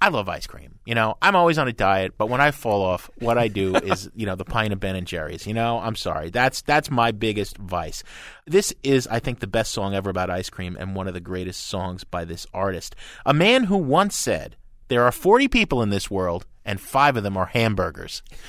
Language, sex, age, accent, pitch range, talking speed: English, male, 30-49, American, 95-135 Hz, 245 wpm